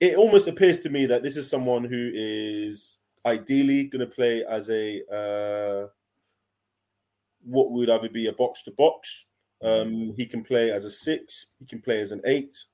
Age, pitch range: 20-39, 105-145 Hz